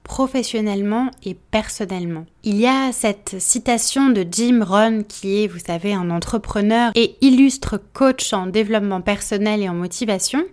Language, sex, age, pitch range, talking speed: French, female, 20-39, 195-240 Hz, 150 wpm